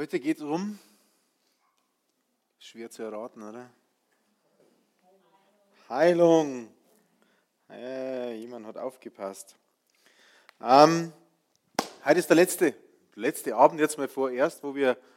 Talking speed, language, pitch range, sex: 95 wpm, German, 140-190 Hz, male